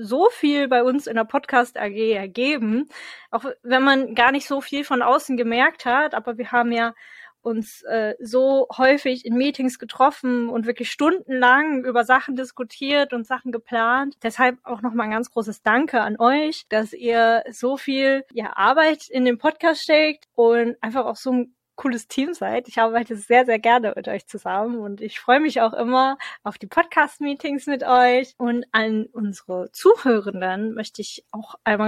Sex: female